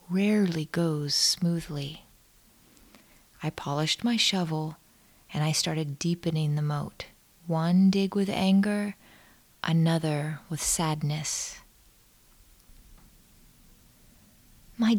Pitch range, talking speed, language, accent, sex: 150-195 Hz, 85 wpm, English, American, female